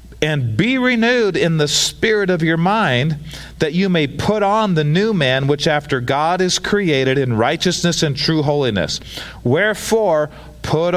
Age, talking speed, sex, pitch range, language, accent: 40-59, 160 wpm, male, 110-180 Hz, English, American